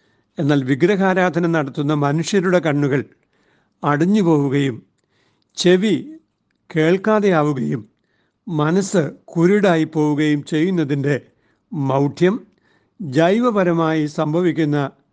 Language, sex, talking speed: Malayalam, male, 65 wpm